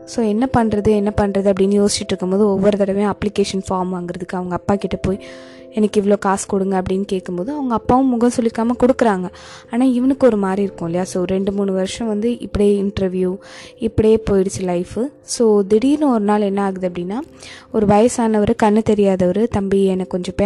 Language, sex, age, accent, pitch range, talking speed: Tamil, female, 20-39, native, 190-225 Hz, 165 wpm